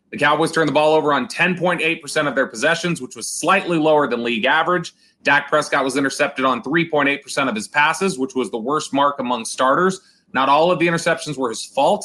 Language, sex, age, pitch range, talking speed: English, male, 30-49, 125-160 Hz, 210 wpm